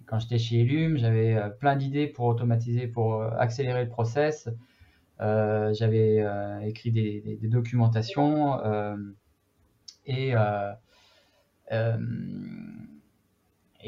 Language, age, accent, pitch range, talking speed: French, 20-39, French, 105-125 Hz, 110 wpm